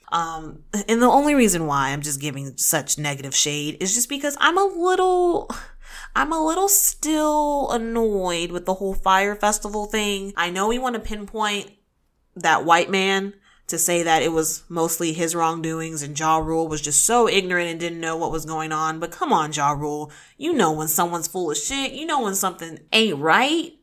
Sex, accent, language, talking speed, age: female, American, English, 195 wpm, 20-39